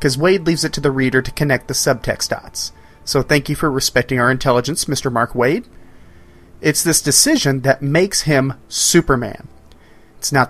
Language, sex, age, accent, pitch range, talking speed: English, male, 30-49, American, 110-160 Hz, 175 wpm